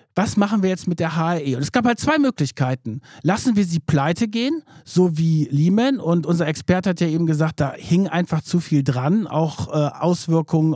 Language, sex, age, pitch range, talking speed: German, male, 50-69, 155-210 Hz, 205 wpm